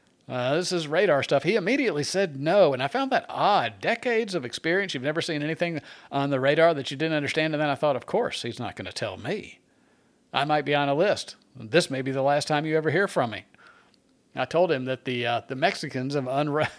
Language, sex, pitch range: English, male, 140-185 Hz